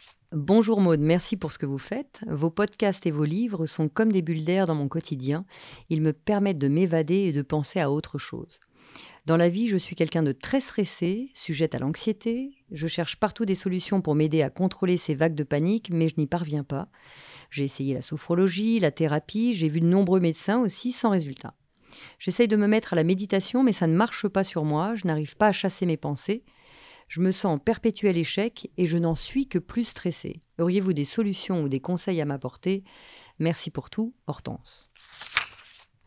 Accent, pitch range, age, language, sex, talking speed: French, 155-205 Hz, 40-59, French, female, 205 wpm